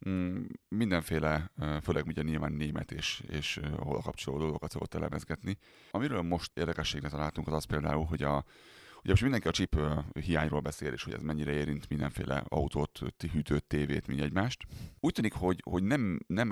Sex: male